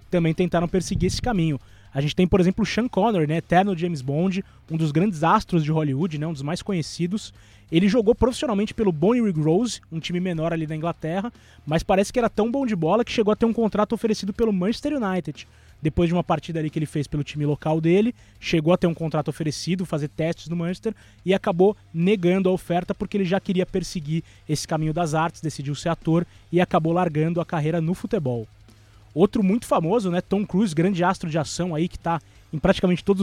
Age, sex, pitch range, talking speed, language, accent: 20-39, male, 150-195 Hz, 215 wpm, Portuguese, Brazilian